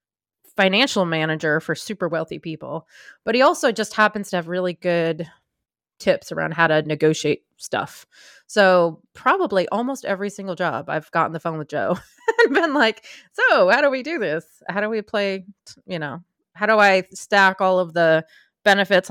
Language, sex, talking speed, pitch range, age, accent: English, female, 175 wpm, 160-200 Hz, 20-39, American